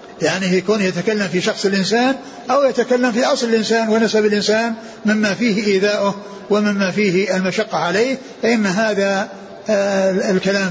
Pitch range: 185-220 Hz